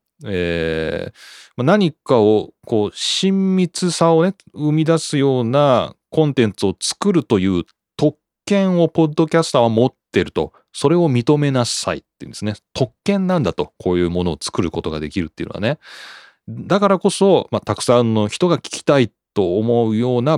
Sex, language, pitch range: male, Japanese, 90-150 Hz